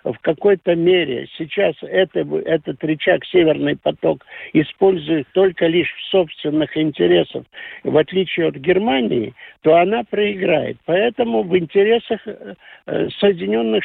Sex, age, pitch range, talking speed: male, 60-79, 165-210 Hz, 115 wpm